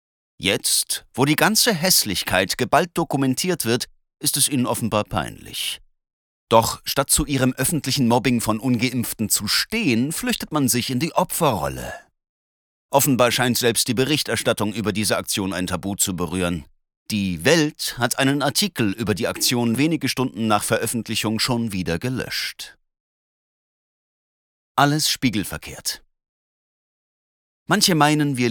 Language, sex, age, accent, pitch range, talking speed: German, male, 30-49, German, 110-145 Hz, 130 wpm